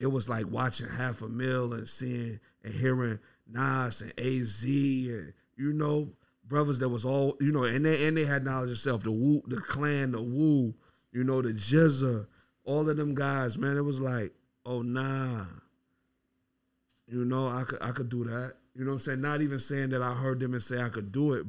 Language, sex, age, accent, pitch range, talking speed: English, male, 50-69, American, 110-135 Hz, 210 wpm